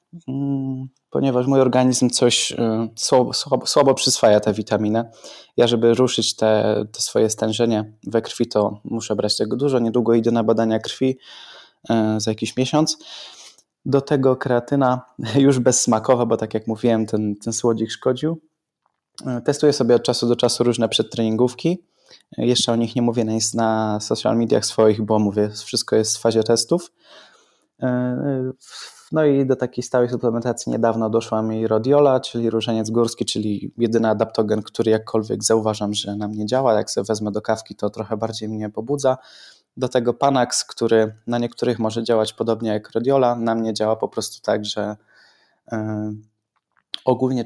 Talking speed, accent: 155 wpm, native